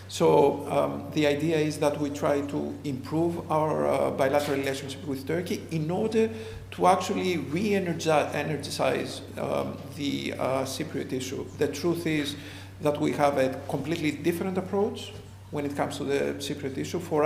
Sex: male